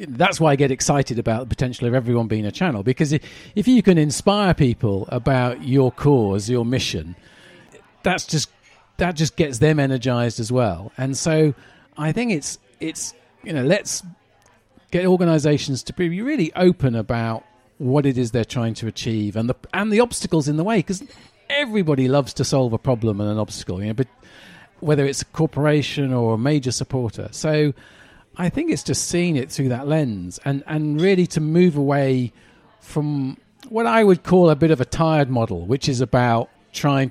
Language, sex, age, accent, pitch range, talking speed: English, male, 40-59, British, 120-160 Hz, 190 wpm